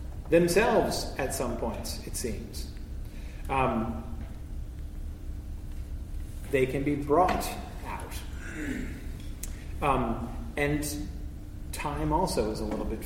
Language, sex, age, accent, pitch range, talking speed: English, male, 30-49, American, 105-135 Hz, 90 wpm